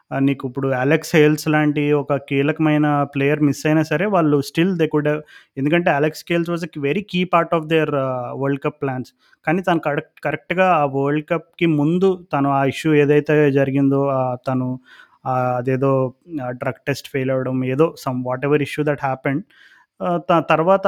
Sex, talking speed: male, 160 wpm